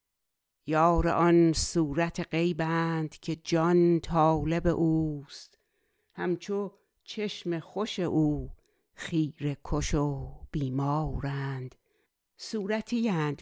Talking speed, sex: 75 wpm, female